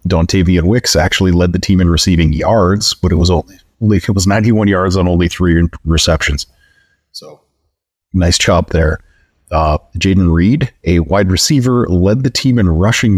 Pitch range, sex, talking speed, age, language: 85-105 Hz, male, 165 wpm, 30-49, English